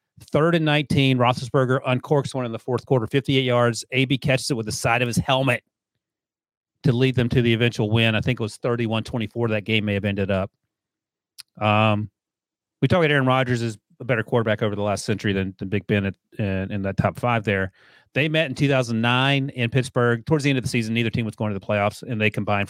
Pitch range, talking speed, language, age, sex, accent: 105-130 Hz, 225 wpm, English, 40-59, male, American